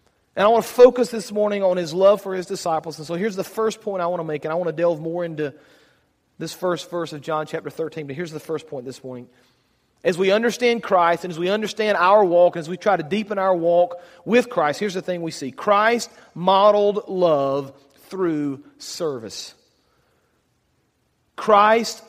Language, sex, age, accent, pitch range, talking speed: English, male, 40-59, American, 165-215 Hz, 200 wpm